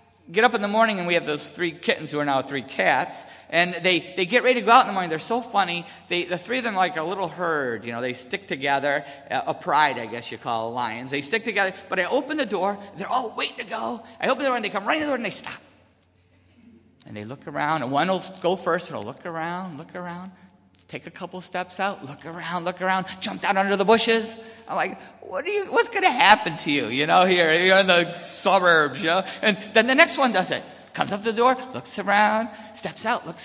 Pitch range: 165-225 Hz